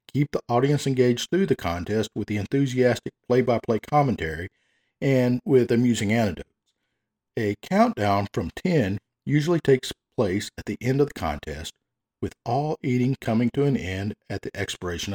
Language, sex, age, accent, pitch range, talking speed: English, male, 50-69, American, 105-140 Hz, 155 wpm